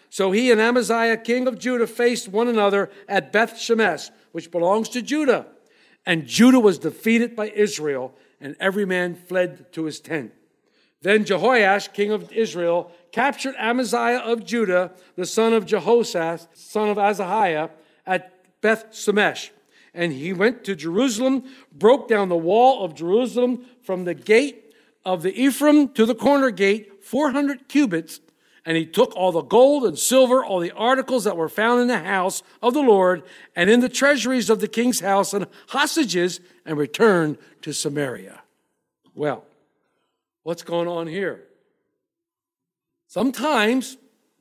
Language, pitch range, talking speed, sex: English, 185-255 Hz, 150 wpm, male